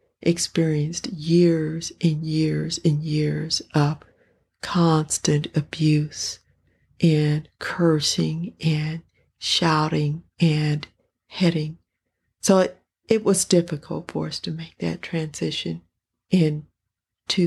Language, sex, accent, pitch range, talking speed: English, female, American, 150-170 Hz, 95 wpm